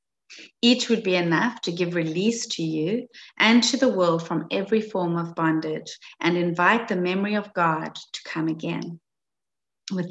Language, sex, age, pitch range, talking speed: English, female, 30-49, 170-220 Hz, 165 wpm